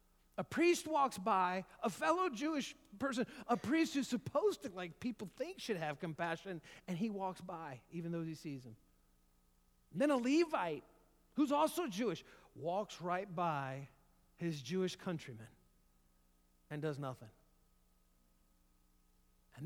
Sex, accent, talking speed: male, American, 135 wpm